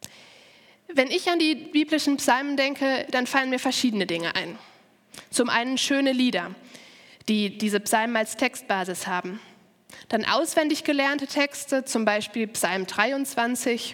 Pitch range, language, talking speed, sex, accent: 215-275 Hz, German, 135 wpm, female, German